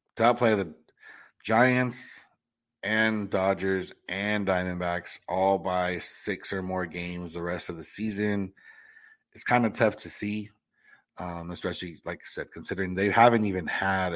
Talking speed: 155 wpm